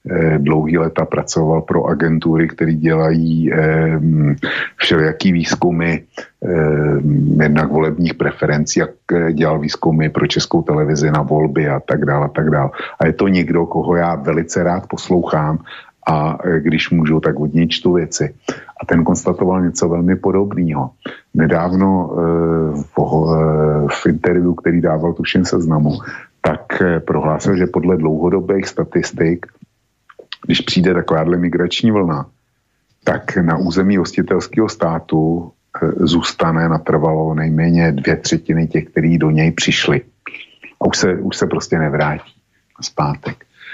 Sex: male